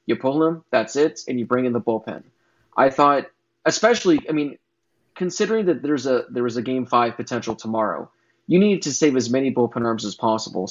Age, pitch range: 20-39, 115-135 Hz